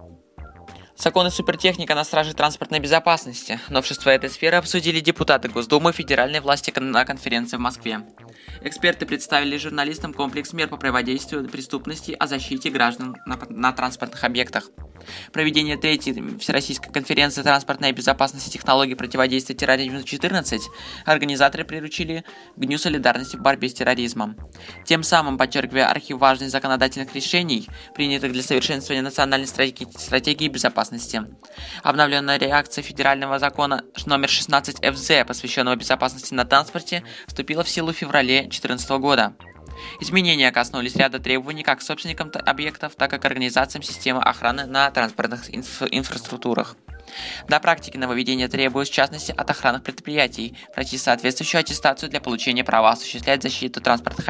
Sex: male